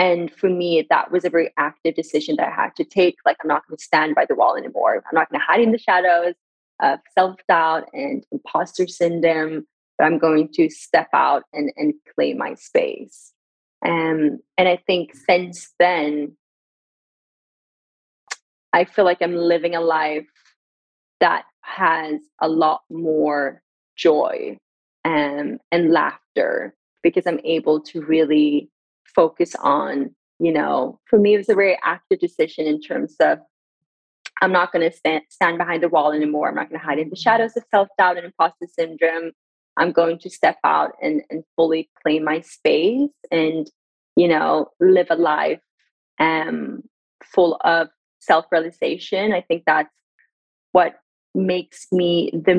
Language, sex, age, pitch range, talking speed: English, female, 20-39, 160-190 Hz, 160 wpm